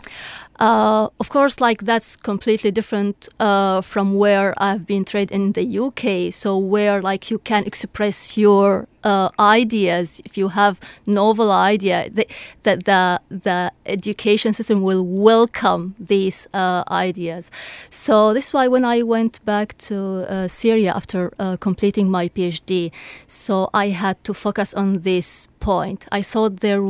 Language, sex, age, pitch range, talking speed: English, female, 30-49, 185-210 Hz, 150 wpm